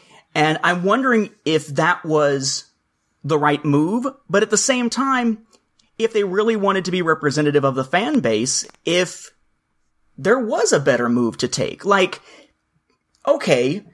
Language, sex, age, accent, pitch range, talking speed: English, male, 30-49, American, 150-210 Hz, 150 wpm